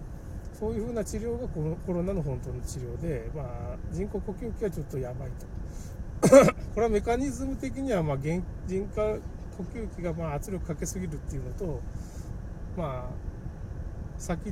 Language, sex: Japanese, male